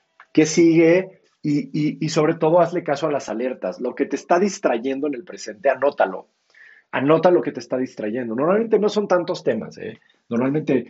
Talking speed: 185 wpm